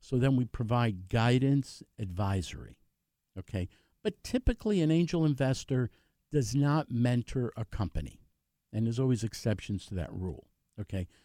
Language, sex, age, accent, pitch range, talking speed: English, male, 50-69, American, 110-145 Hz, 135 wpm